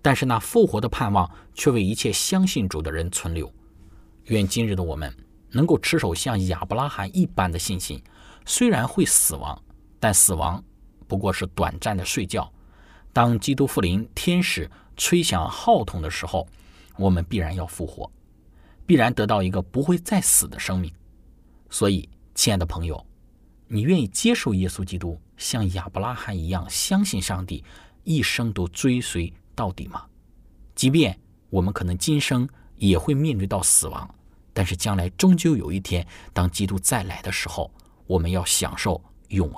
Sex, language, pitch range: male, Chinese, 90-110 Hz